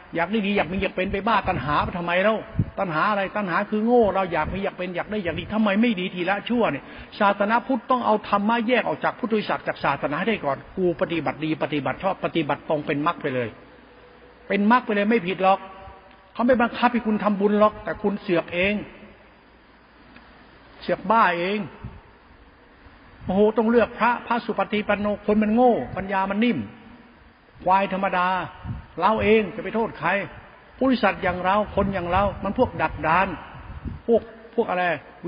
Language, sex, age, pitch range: Thai, male, 60-79, 180-230 Hz